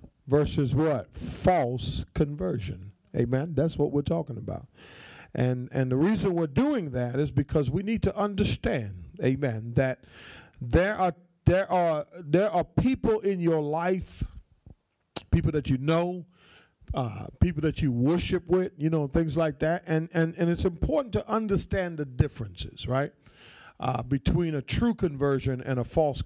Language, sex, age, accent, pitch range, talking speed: English, male, 50-69, American, 130-175 Hz, 155 wpm